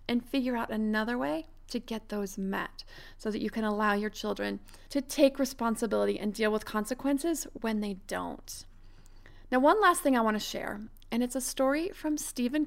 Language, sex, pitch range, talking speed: English, female, 215-265 Hz, 190 wpm